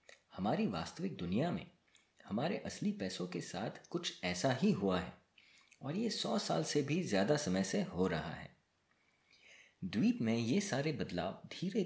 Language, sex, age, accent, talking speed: Hindi, male, 30-49, native, 160 wpm